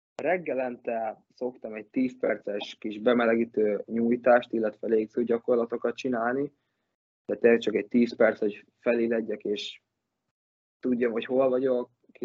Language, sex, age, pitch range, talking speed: Hungarian, male, 20-39, 110-125 Hz, 125 wpm